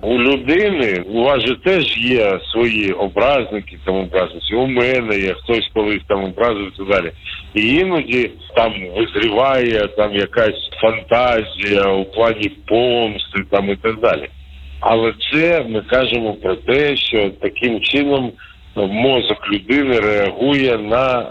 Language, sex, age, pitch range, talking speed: Ukrainian, male, 50-69, 100-140 Hz, 130 wpm